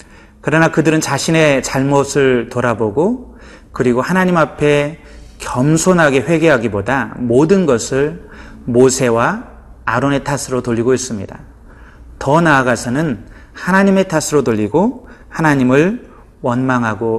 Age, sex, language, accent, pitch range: 30-49, male, Korean, native, 120-155 Hz